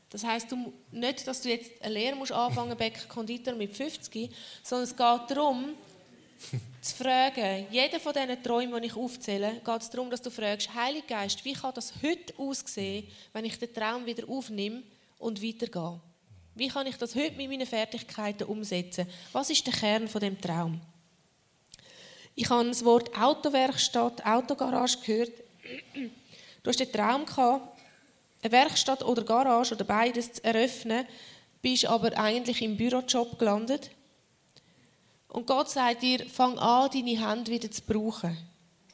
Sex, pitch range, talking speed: female, 215-255 Hz, 155 wpm